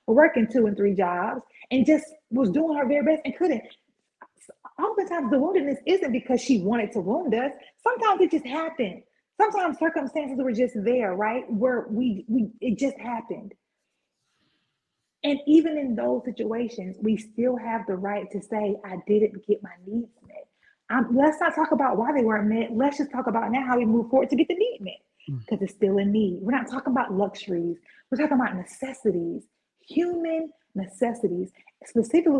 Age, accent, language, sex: 30-49, American, English, female